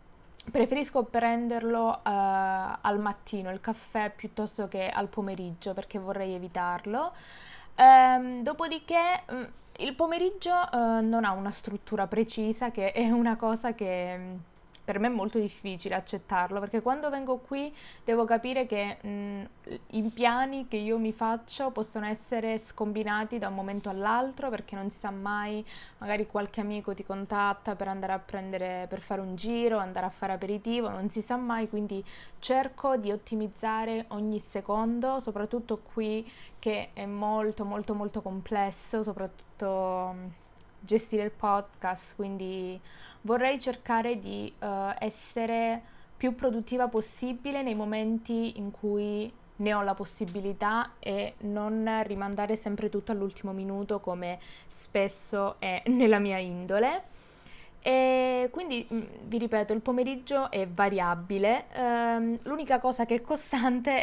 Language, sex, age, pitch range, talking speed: Italian, female, 20-39, 200-235 Hz, 130 wpm